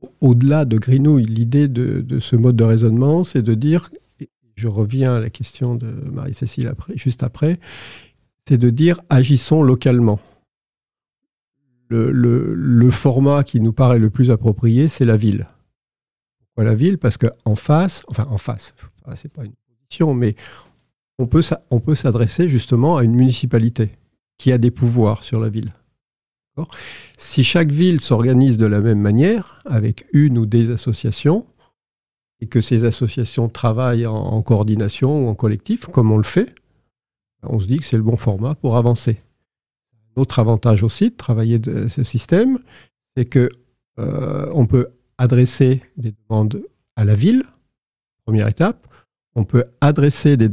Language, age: French, 50-69